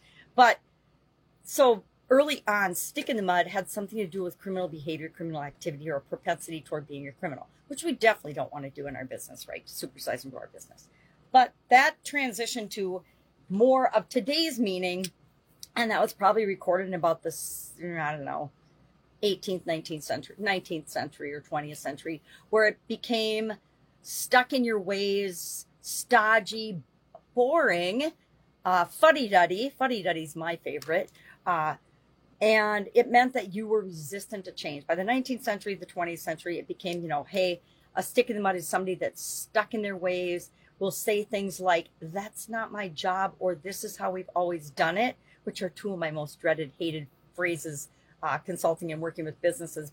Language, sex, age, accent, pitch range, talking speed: English, female, 40-59, American, 160-215 Hz, 175 wpm